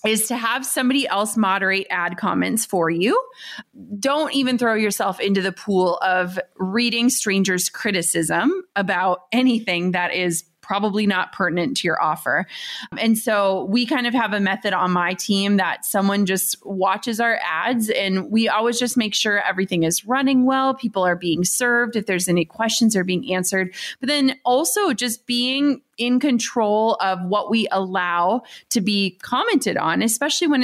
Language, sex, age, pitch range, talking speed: English, female, 30-49, 190-240 Hz, 170 wpm